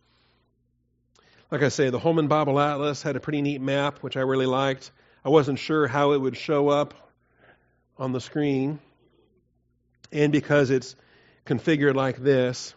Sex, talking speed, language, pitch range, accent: male, 155 wpm, English, 125-150 Hz, American